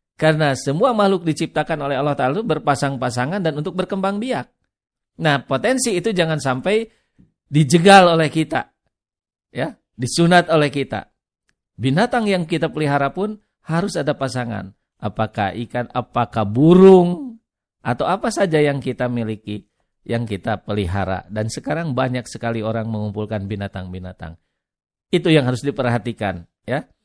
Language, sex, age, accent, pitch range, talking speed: Indonesian, male, 50-69, native, 125-185 Hz, 125 wpm